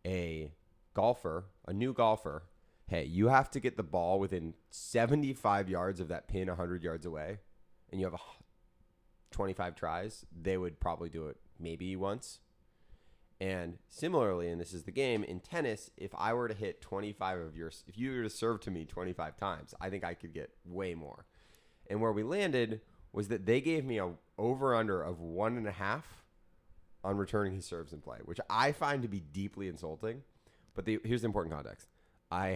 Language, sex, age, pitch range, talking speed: English, male, 20-39, 85-110 Hz, 190 wpm